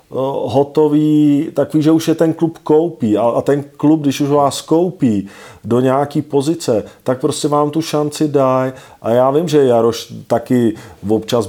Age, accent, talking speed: 40-59, native, 170 wpm